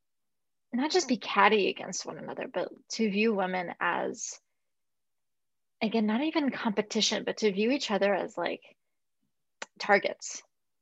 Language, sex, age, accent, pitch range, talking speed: English, female, 20-39, American, 185-225 Hz, 135 wpm